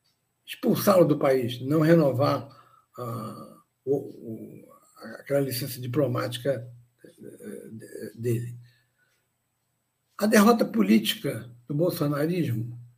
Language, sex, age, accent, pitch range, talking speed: Portuguese, male, 60-79, Brazilian, 120-175 Hz, 65 wpm